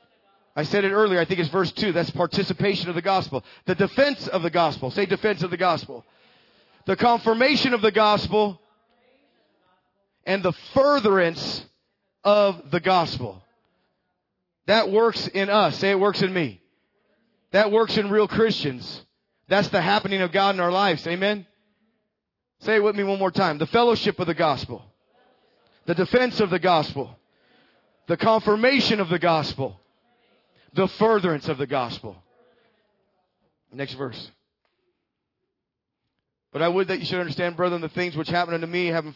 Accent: American